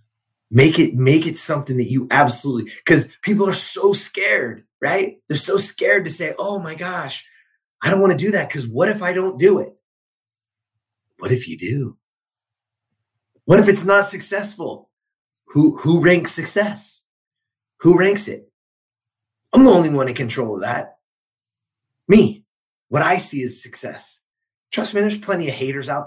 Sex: male